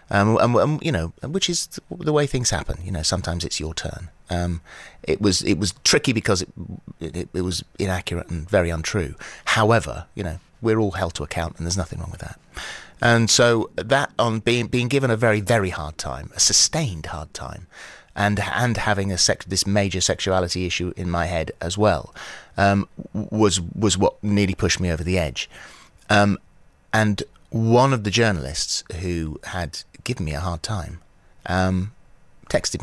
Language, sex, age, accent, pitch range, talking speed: English, male, 30-49, British, 85-110 Hz, 185 wpm